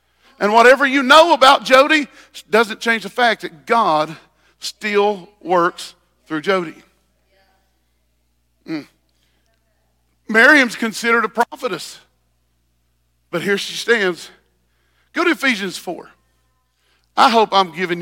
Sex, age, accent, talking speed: male, 50-69, American, 110 wpm